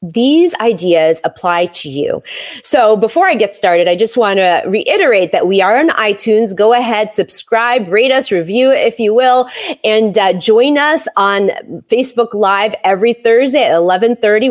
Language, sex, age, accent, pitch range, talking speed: English, female, 30-49, American, 185-265 Hz, 170 wpm